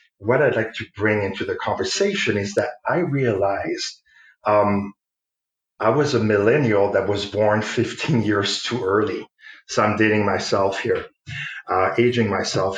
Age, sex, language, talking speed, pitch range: 40-59, male, English, 150 wpm, 100-125 Hz